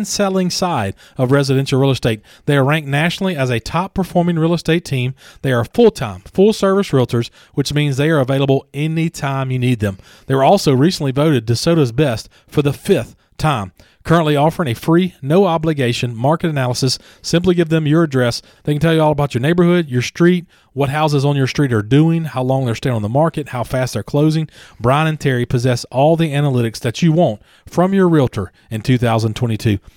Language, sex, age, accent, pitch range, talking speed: English, male, 40-59, American, 125-170 Hz, 195 wpm